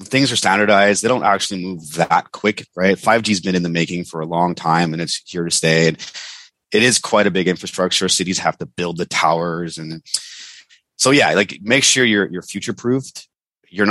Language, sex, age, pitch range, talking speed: English, male, 30-49, 85-105 Hz, 205 wpm